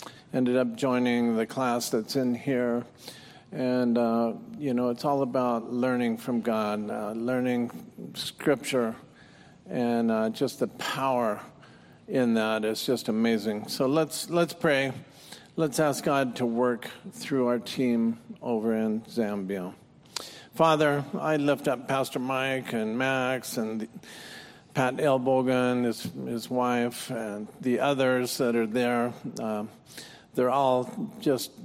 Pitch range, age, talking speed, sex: 115-135 Hz, 50-69, 135 wpm, male